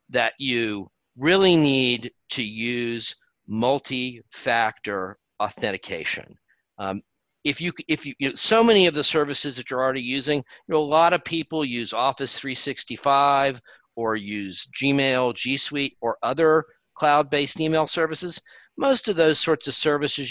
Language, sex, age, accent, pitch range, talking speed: English, male, 50-69, American, 120-155 Hz, 145 wpm